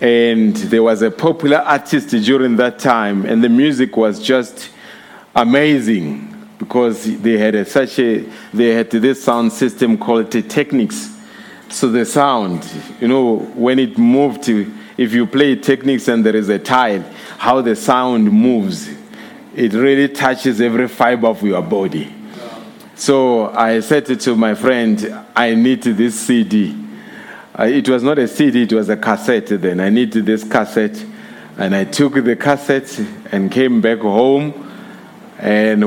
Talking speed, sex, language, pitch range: 155 wpm, male, English, 110-135 Hz